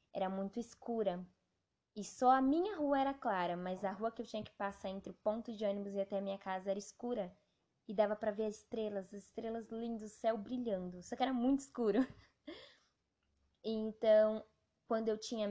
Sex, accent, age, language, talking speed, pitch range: female, Brazilian, 10-29, Portuguese, 195 wpm, 195-235 Hz